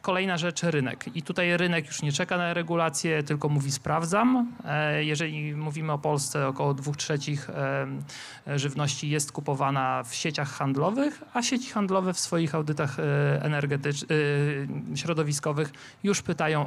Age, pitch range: 40-59, 145-175 Hz